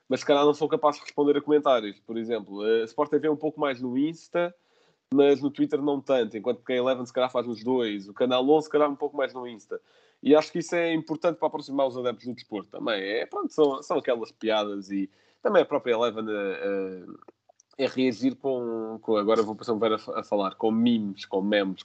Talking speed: 230 wpm